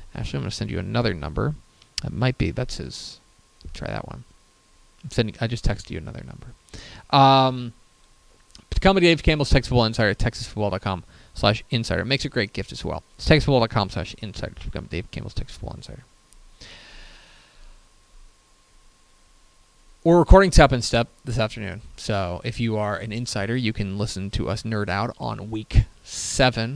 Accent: American